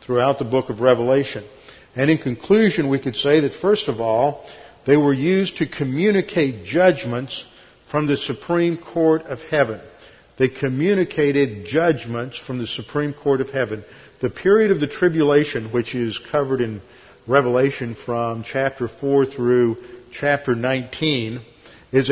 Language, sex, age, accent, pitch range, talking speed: English, male, 50-69, American, 125-155 Hz, 145 wpm